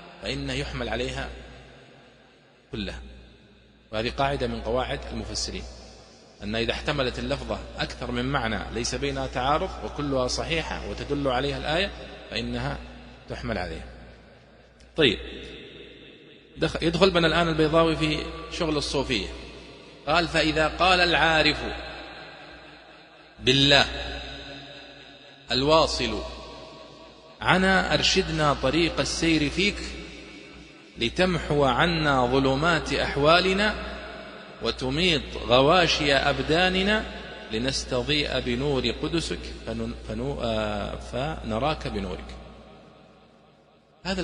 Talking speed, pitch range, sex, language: 85 wpm, 120-165 Hz, male, Arabic